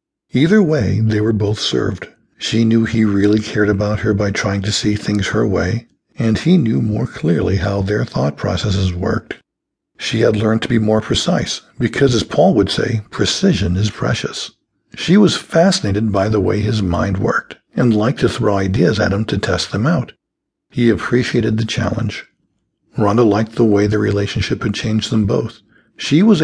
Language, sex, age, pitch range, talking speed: English, male, 60-79, 105-125 Hz, 185 wpm